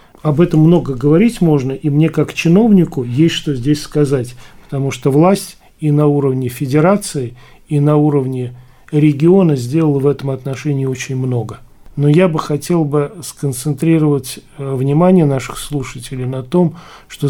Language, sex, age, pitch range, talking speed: Russian, male, 40-59, 130-155 Hz, 145 wpm